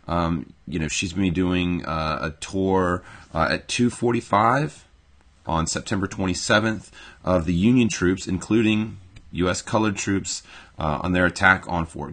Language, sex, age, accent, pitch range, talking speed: English, male, 30-49, American, 75-90 Hz, 160 wpm